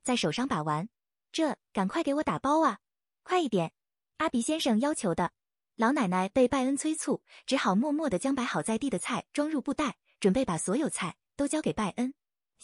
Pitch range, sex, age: 210-290 Hz, female, 20-39